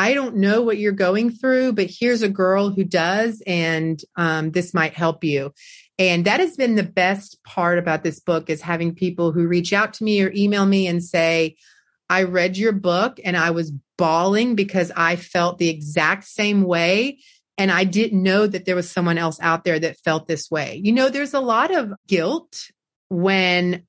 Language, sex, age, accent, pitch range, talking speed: English, female, 30-49, American, 175-230 Hz, 200 wpm